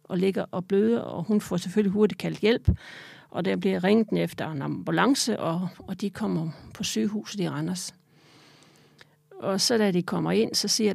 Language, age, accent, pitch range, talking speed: Danish, 40-59, native, 165-210 Hz, 185 wpm